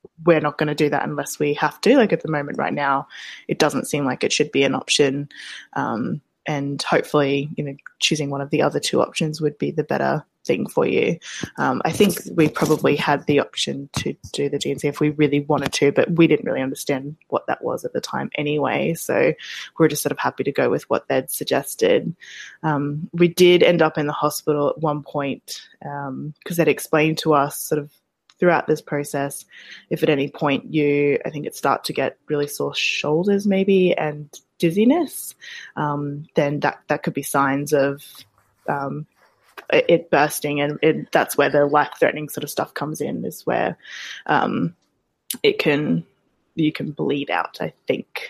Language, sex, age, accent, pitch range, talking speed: English, female, 20-39, Australian, 145-165 Hz, 195 wpm